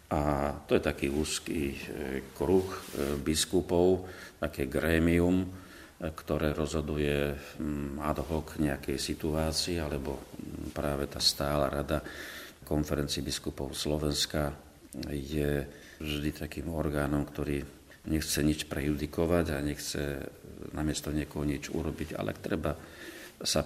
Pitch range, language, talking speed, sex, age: 70-80 Hz, Slovak, 105 wpm, male, 40-59